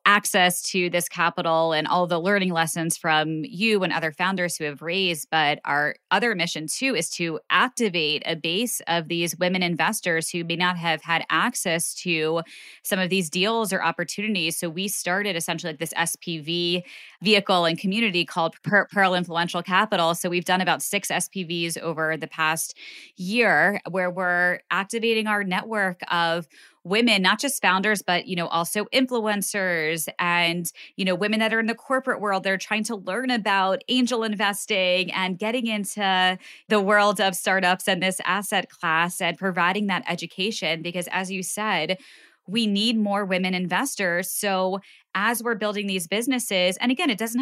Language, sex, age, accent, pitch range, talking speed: English, female, 20-39, American, 175-220 Hz, 170 wpm